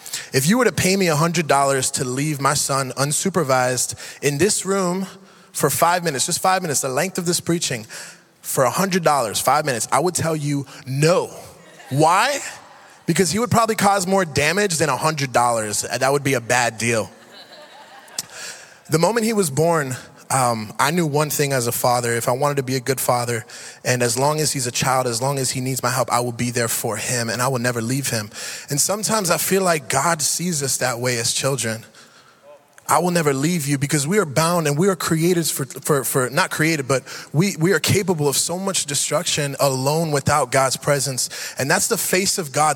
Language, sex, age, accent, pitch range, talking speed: English, male, 20-39, American, 130-170 Hz, 210 wpm